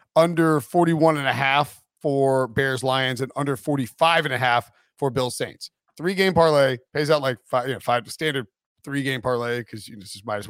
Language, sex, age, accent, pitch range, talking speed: English, male, 40-59, American, 125-155 Hz, 215 wpm